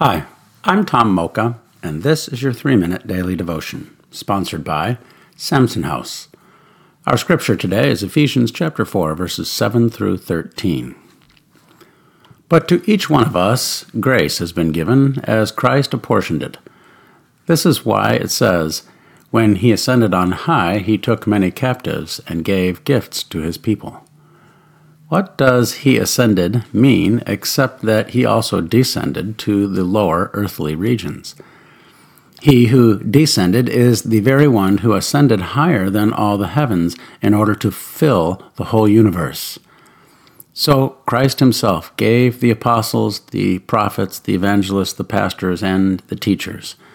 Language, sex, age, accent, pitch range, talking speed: English, male, 50-69, American, 95-130 Hz, 140 wpm